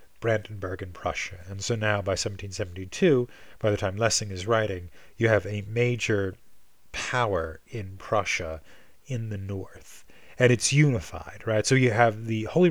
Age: 30-49